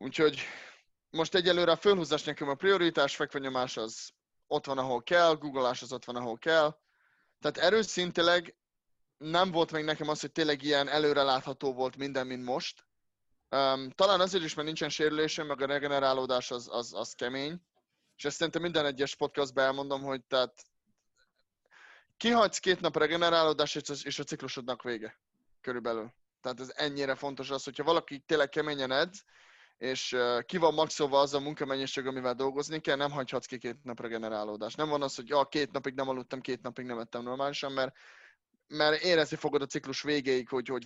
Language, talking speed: Hungarian, 170 wpm